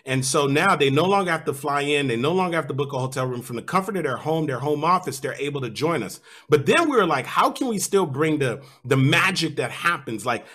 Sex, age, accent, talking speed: male, 30-49, American, 280 wpm